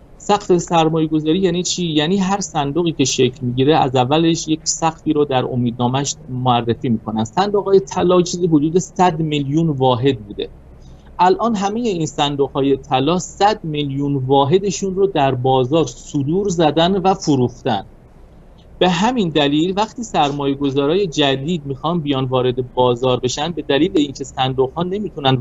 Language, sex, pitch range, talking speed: Persian, male, 130-185 Hz, 145 wpm